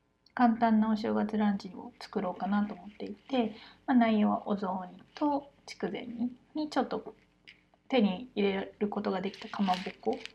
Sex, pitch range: female, 200-245 Hz